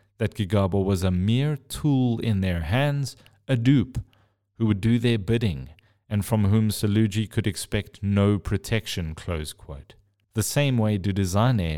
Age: 30-49